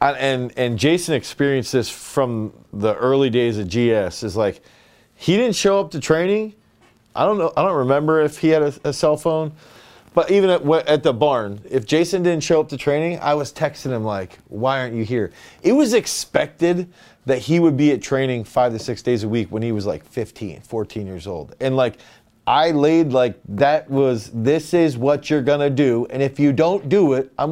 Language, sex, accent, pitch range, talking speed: English, male, American, 130-180 Hz, 210 wpm